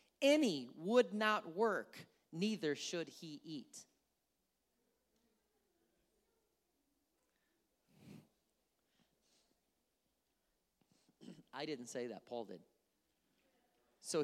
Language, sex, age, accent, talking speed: English, male, 40-59, American, 65 wpm